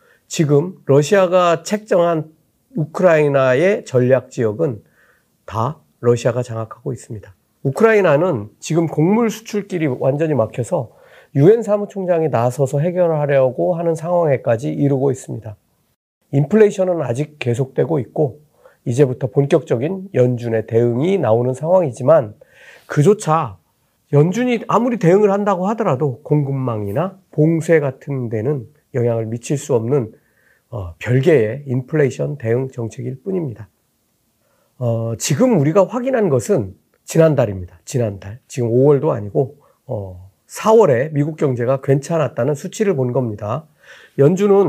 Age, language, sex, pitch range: 40-59, Korean, male, 125-175 Hz